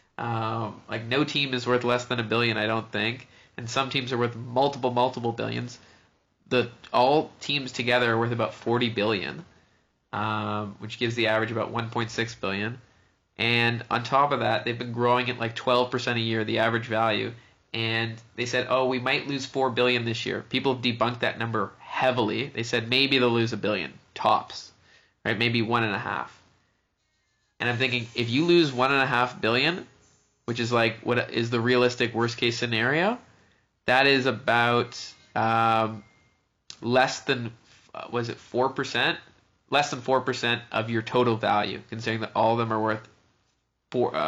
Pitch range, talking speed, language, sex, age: 110-125 Hz, 180 wpm, English, male, 20-39